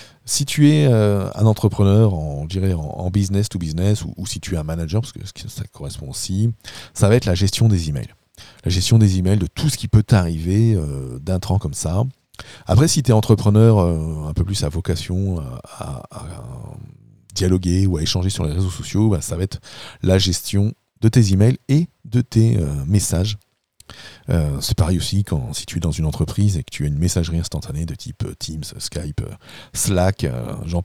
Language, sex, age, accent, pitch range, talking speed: French, male, 40-59, French, 85-115 Hz, 200 wpm